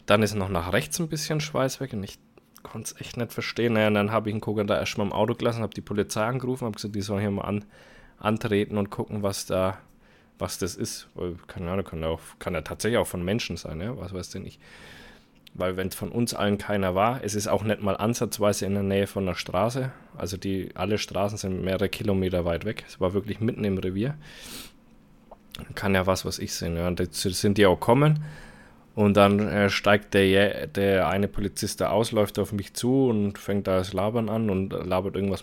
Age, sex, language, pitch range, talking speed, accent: 20-39, male, German, 95-110 Hz, 220 wpm, German